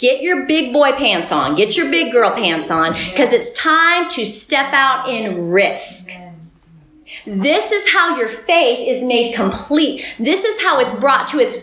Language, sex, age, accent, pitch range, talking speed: English, female, 40-59, American, 220-320 Hz, 180 wpm